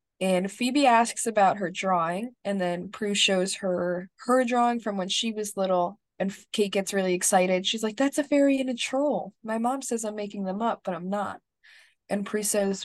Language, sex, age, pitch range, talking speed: English, female, 20-39, 185-215 Hz, 205 wpm